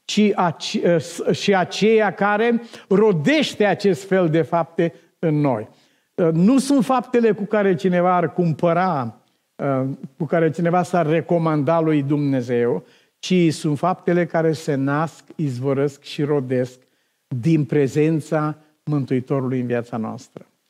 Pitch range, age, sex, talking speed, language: 145-195 Hz, 50-69, male, 115 wpm, Romanian